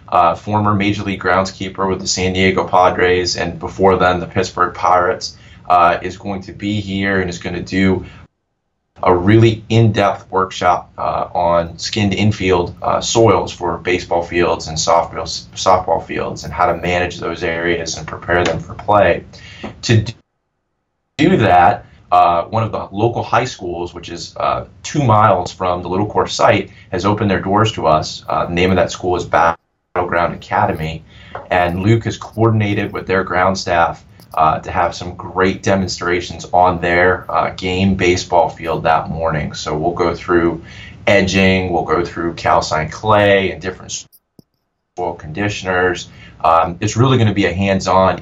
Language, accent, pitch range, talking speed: English, American, 85-105 Hz, 165 wpm